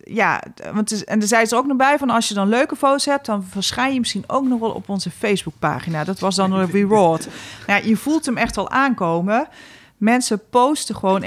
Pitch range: 190-235 Hz